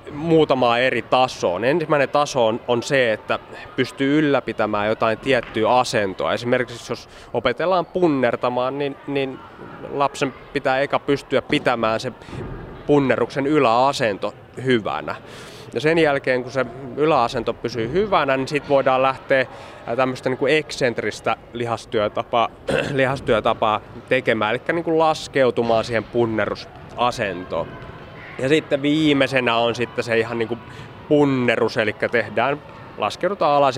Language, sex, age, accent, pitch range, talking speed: Finnish, male, 20-39, native, 115-140 Hz, 120 wpm